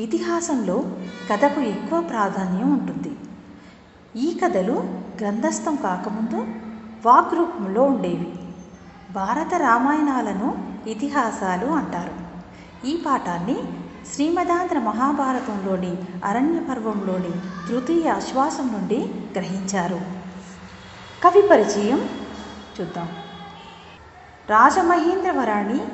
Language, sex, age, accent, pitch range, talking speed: Telugu, female, 50-69, native, 195-275 Hz, 65 wpm